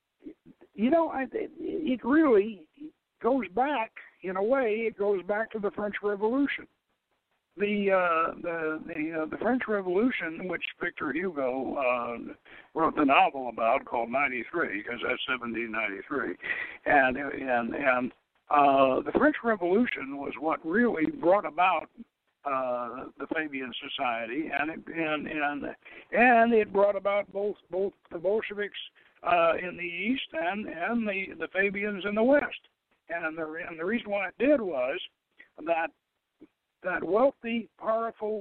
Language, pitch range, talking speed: English, 165-240 Hz, 145 wpm